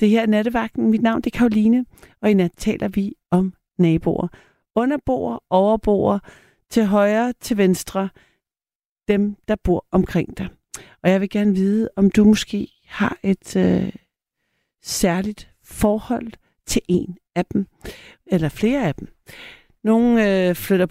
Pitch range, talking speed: 175-215 Hz, 145 wpm